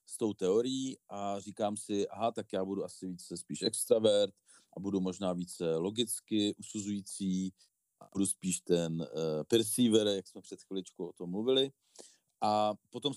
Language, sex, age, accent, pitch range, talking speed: Czech, male, 40-59, native, 95-110 Hz, 155 wpm